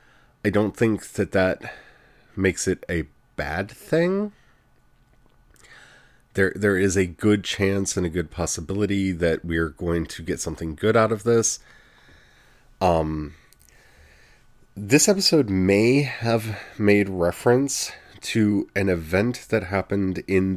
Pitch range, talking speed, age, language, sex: 90-115 Hz, 130 wpm, 30-49, English, male